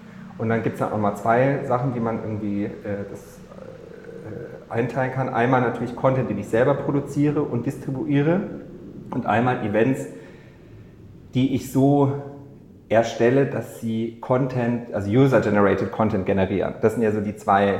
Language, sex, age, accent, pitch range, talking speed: German, male, 40-59, German, 110-135 Hz, 155 wpm